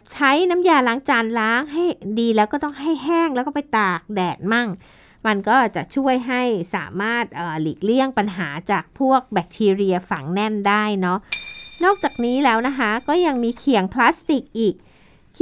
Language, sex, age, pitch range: Thai, female, 60-79, 195-275 Hz